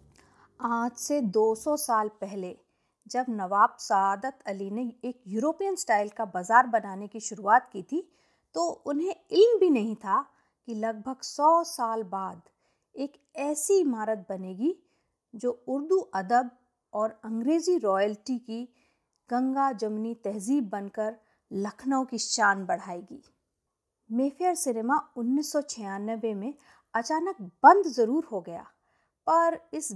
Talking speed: 120 wpm